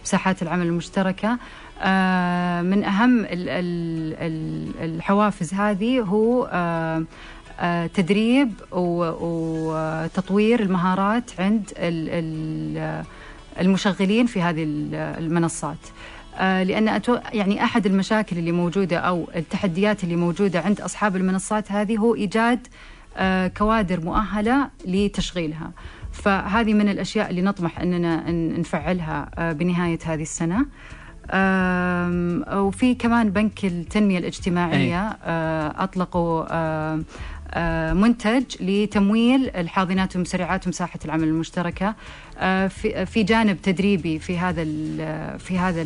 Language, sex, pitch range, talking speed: Arabic, female, 165-205 Hz, 85 wpm